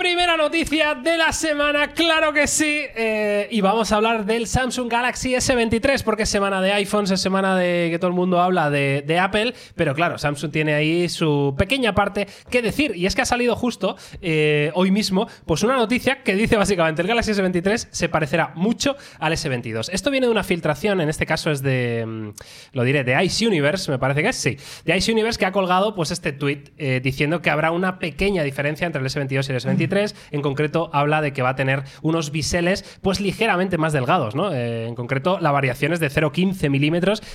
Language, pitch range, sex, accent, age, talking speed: Spanish, 145-210 Hz, male, Spanish, 20-39, 210 wpm